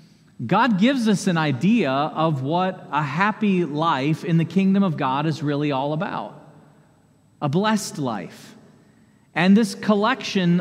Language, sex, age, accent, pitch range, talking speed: English, male, 40-59, American, 165-200 Hz, 140 wpm